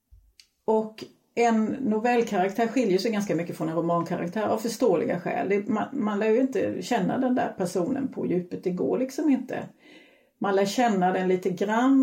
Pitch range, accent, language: 190-250 Hz, native, Swedish